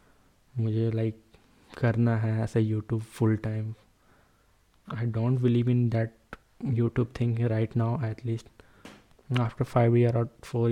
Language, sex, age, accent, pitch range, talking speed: Hindi, male, 20-39, native, 115-125 Hz, 135 wpm